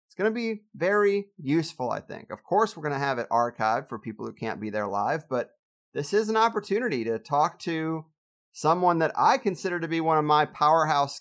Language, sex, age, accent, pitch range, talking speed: English, male, 30-49, American, 130-185 Hz, 220 wpm